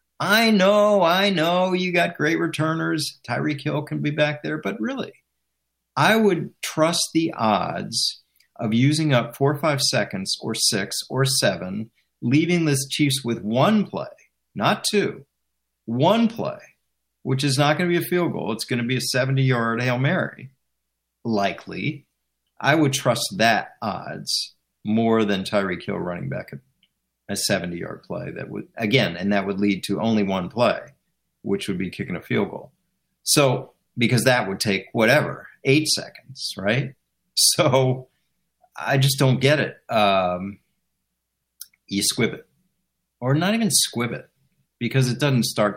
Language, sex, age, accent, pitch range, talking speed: English, male, 50-69, American, 115-180 Hz, 160 wpm